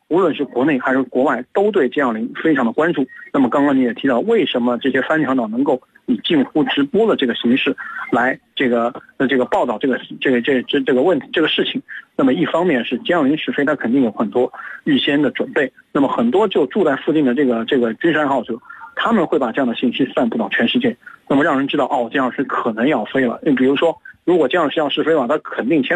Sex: male